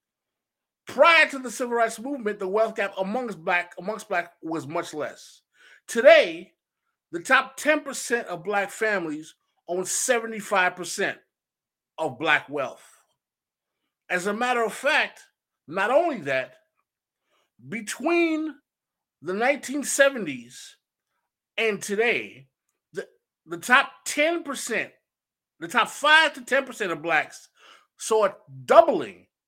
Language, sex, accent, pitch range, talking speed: English, male, American, 190-265 Hz, 120 wpm